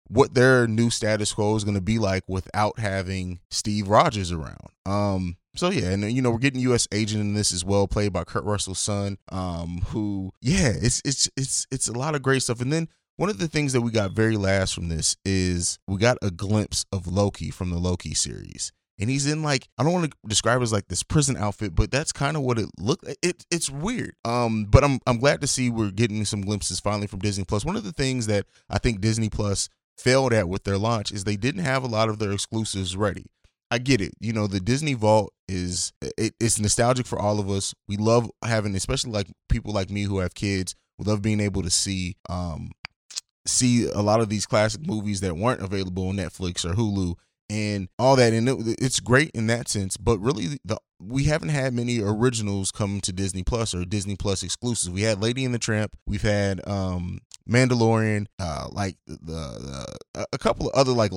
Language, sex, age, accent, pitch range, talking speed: English, male, 20-39, American, 95-120 Hz, 225 wpm